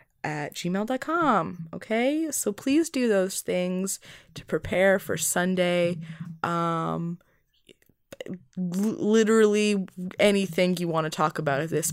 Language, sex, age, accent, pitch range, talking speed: English, female, 20-39, American, 175-250 Hz, 110 wpm